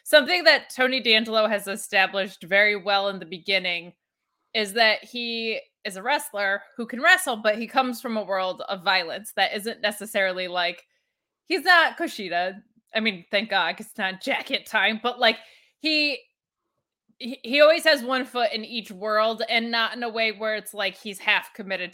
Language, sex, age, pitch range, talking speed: English, female, 20-39, 195-245 Hz, 180 wpm